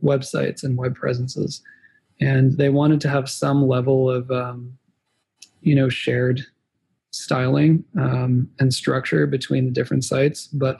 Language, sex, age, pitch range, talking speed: English, male, 20-39, 125-140 Hz, 140 wpm